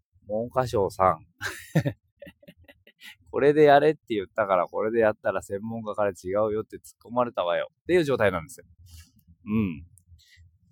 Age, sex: 20-39, male